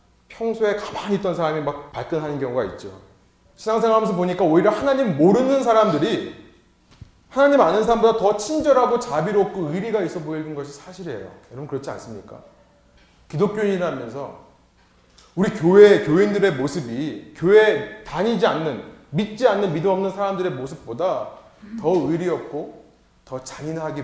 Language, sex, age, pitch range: Korean, male, 30-49, 155-240 Hz